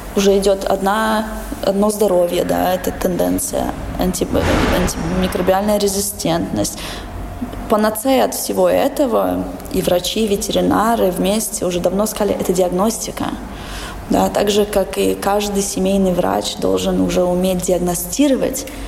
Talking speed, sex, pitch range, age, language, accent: 120 wpm, female, 180-220 Hz, 20-39, Russian, native